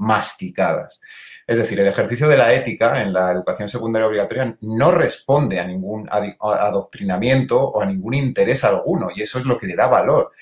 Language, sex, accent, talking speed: Spanish, male, Spanish, 180 wpm